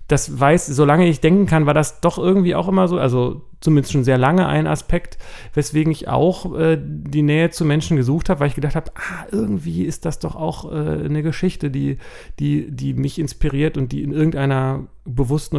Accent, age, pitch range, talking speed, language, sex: German, 40-59, 135-165 Hz, 205 wpm, German, male